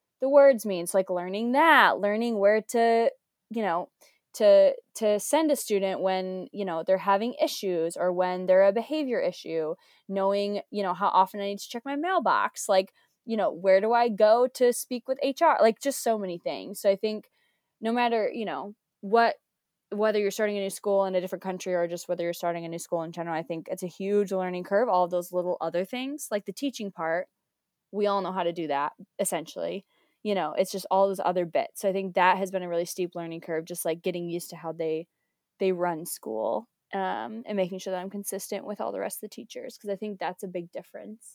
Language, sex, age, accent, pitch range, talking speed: English, female, 20-39, American, 180-215 Hz, 230 wpm